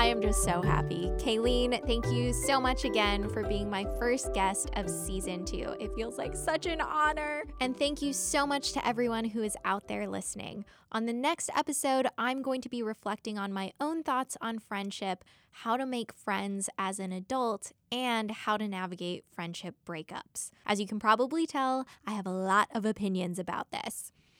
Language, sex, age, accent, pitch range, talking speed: English, female, 10-29, American, 190-245 Hz, 190 wpm